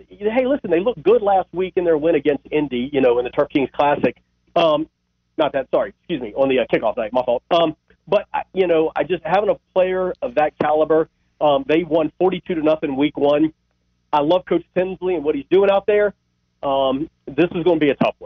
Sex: male